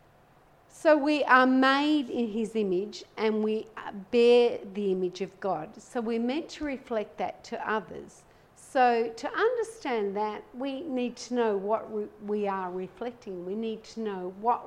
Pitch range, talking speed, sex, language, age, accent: 200-245 Hz, 160 wpm, female, English, 50-69, Australian